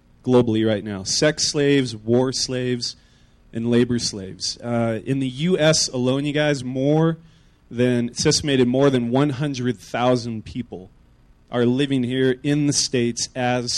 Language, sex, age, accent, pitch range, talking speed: English, male, 30-49, American, 115-140 Hz, 140 wpm